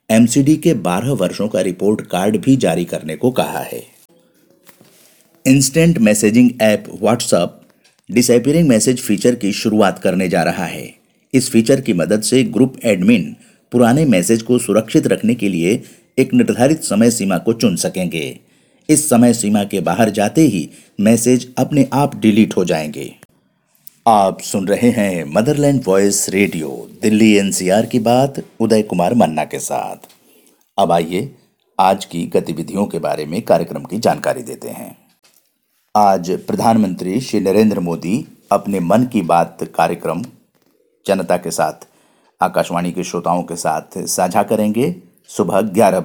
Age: 50-69